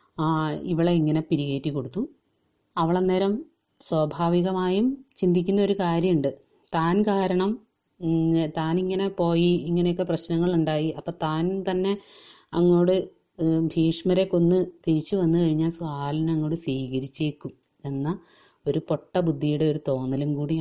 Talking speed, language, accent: 100 wpm, Malayalam, native